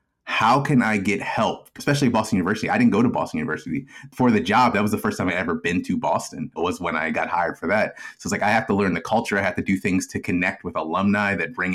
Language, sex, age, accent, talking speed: English, male, 30-49, American, 280 wpm